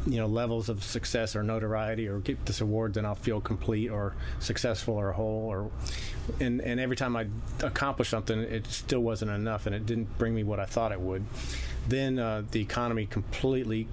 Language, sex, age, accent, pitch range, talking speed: English, male, 40-59, American, 105-120 Hz, 200 wpm